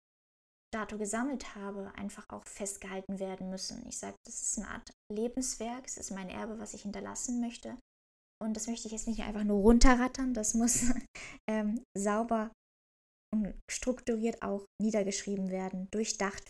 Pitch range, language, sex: 195-225 Hz, German, female